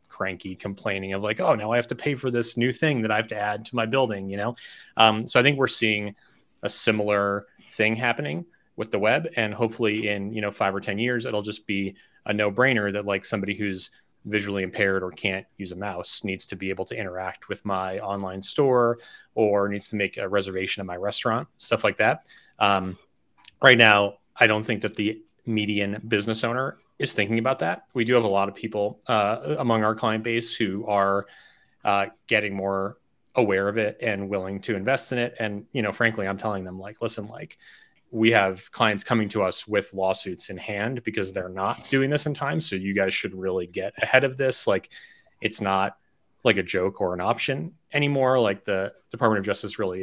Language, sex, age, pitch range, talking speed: English, male, 30-49, 100-115 Hz, 210 wpm